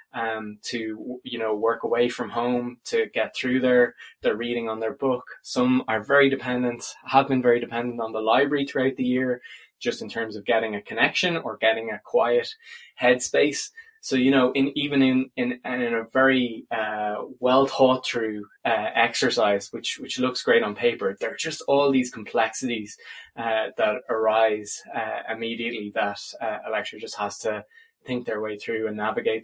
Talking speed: 185 wpm